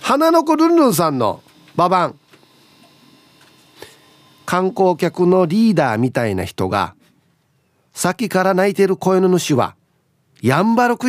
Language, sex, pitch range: Japanese, male, 130-185 Hz